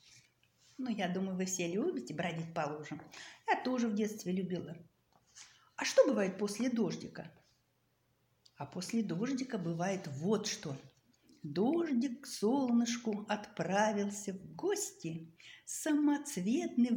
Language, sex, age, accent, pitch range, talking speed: Russian, female, 50-69, native, 195-290 Hz, 115 wpm